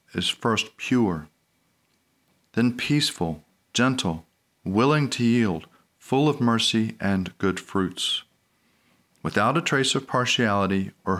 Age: 40-59